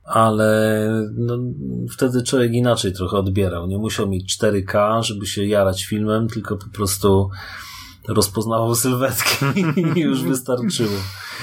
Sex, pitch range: male, 100-125 Hz